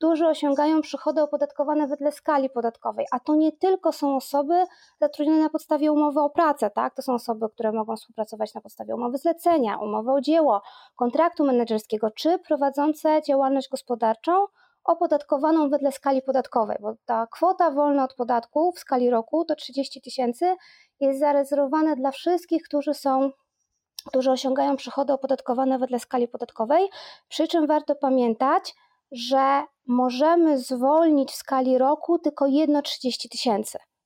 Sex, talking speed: female, 145 wpm